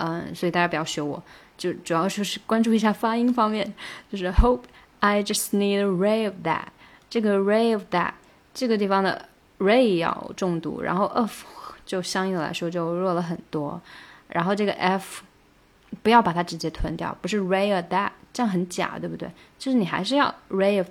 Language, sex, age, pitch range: Chinese, female, 20-39, 170-210 Hz